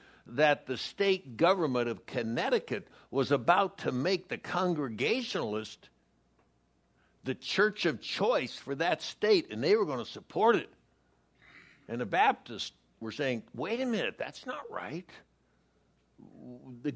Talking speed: 135 wpm